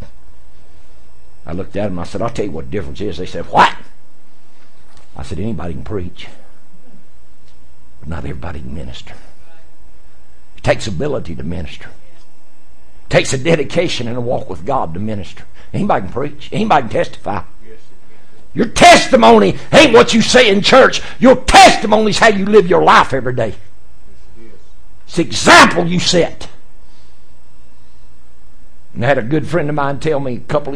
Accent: American